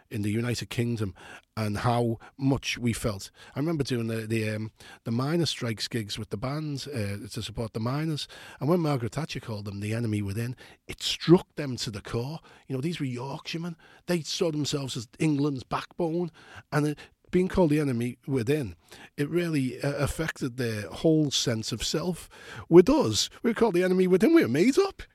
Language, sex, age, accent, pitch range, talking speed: English, male, 40-59, British, 115-165 Hz, 190 wpm